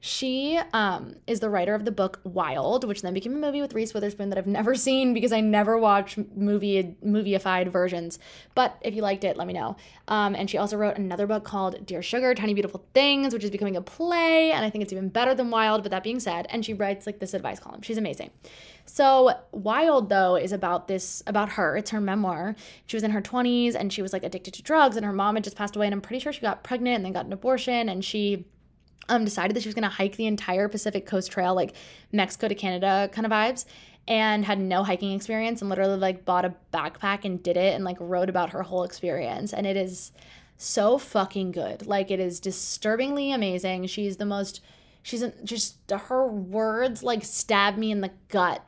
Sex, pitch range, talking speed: female, 190-220 Hz, 230 wpm